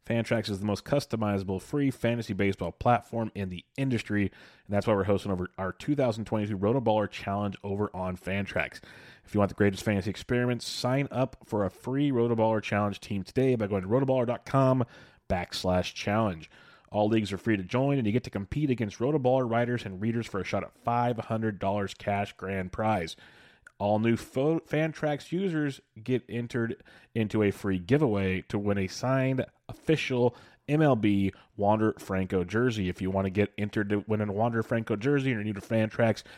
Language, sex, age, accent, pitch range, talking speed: English, male, 30-49, American, 100-125 Hz, 180 wpm